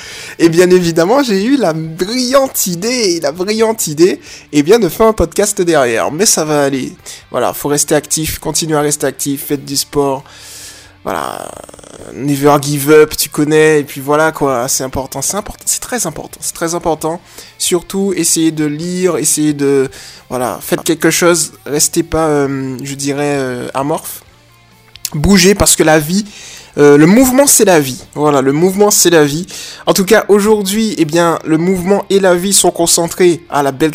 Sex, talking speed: male, 190 wpm